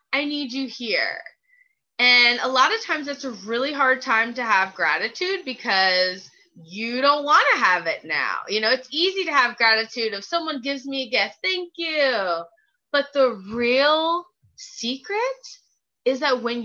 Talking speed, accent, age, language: 170 wpm, American, 20-39, English